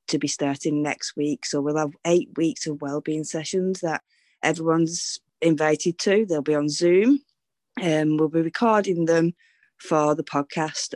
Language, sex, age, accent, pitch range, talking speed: English, female, 20-39, British, 145-165 Hz, 155 wpm